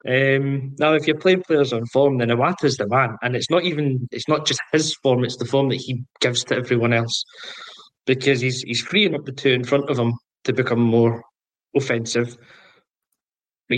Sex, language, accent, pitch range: male, English, British, 120-140 Hz